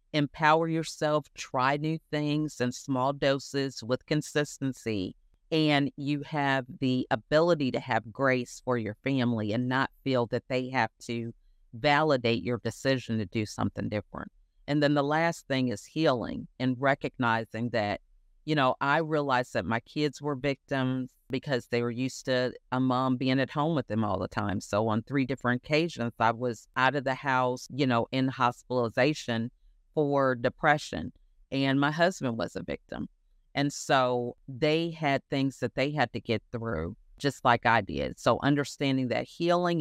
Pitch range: 120-140 Hz